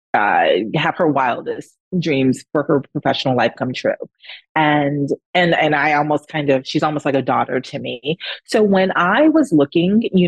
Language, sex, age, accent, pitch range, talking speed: English, female, 30-49, American, 140-185 Hz, 180 wpm